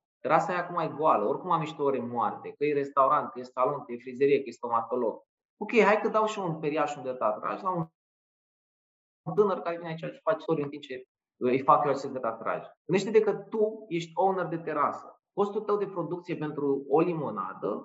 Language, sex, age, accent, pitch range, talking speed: Romanian, male, 20-39, native, 140-195 Hz, 220 wpm